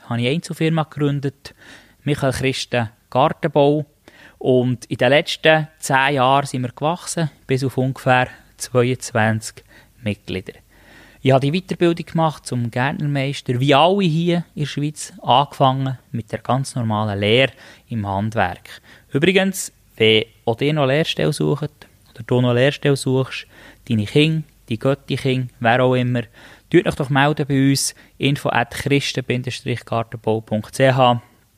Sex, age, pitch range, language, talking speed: male, 20-39, 115-145 Hz, German, 130 wpm